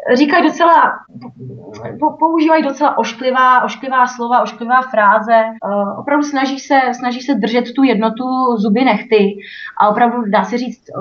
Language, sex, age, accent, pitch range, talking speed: Czech, female, 20-39, native, 220-270 Hz, 125 wpm